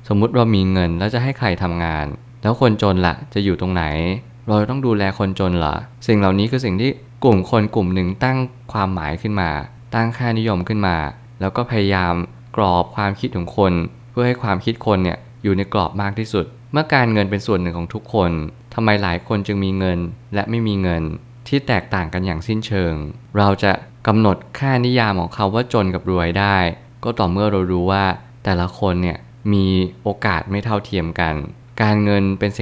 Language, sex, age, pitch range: Thai, male, 20-39, 95-115 Hz